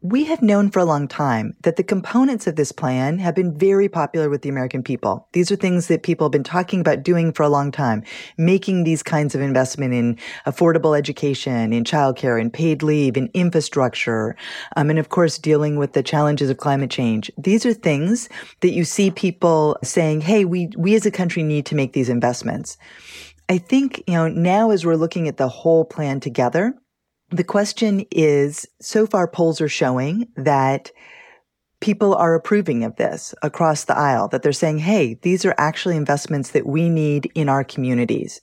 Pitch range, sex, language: 140-180 Hz, female, English